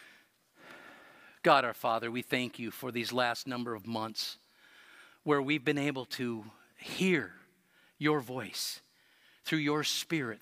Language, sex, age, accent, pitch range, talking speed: English, male, 50-69, American, 120-160 Hz, 130 wpm